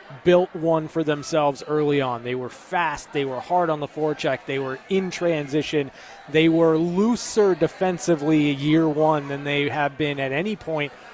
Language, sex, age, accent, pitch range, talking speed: English, male, 20-39, American, 145-170 Hz, 175 wpm